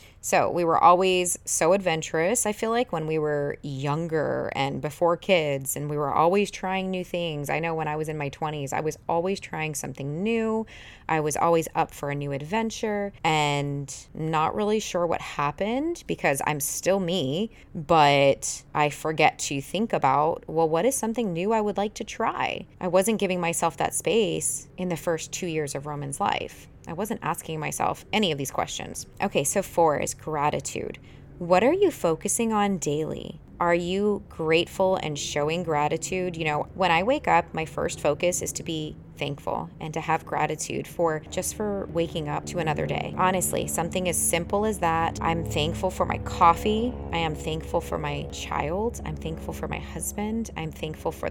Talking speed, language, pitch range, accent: 185 wpm, English, 150-195 Hz, American